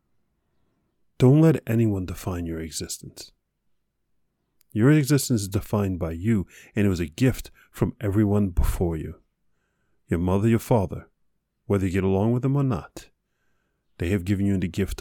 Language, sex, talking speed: English, male, 155 wpm